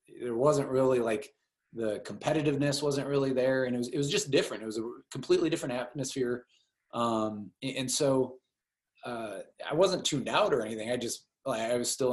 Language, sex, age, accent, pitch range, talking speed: English, male, 20-39, American, 115-135 Hz, 190 wpm